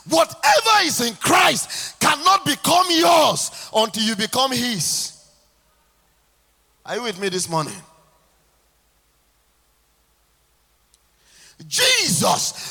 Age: 40-59